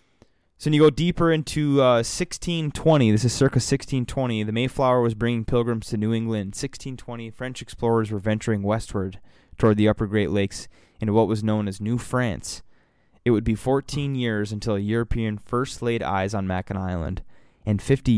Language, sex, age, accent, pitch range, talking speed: English, male, 20-39, American, 100-120 Hz, 180 wpm